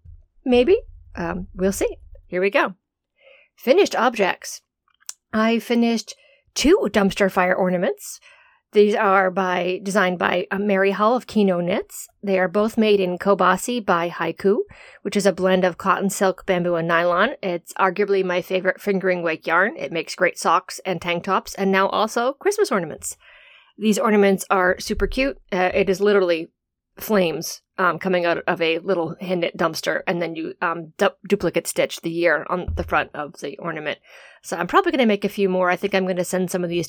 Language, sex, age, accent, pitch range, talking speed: English, female, 40-59, American, 180-205 Hz, 185 wpm